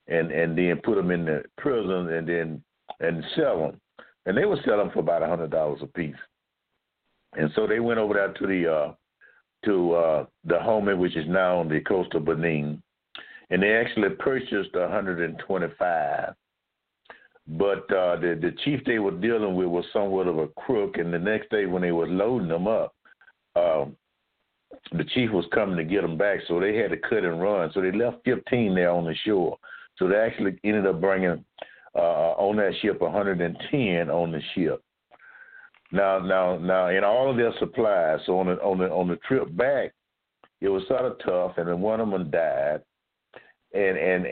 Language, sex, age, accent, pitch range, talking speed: English, male, 60-79, American, 85-100 Hz, 200 wpm